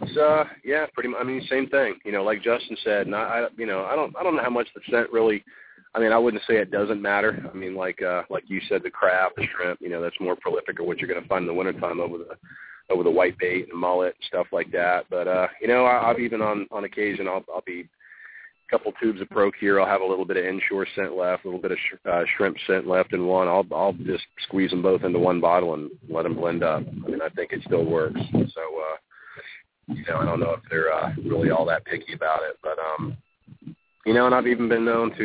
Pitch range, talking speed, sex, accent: 90-110 Hz, 270 wpm, male, American